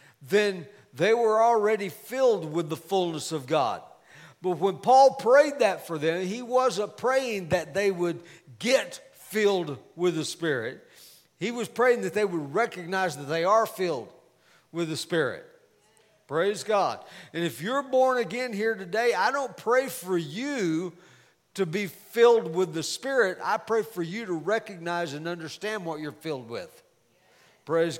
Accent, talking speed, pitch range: American, 160 wpm, 170-235 Hz